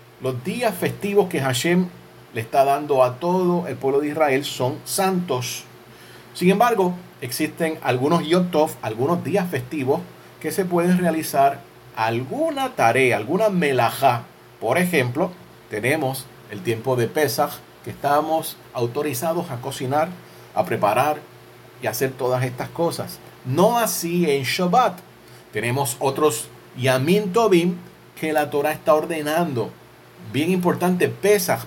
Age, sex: 40-59, male